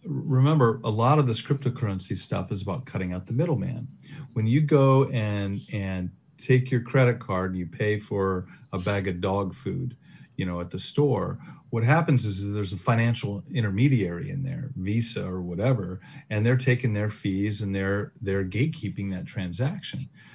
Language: English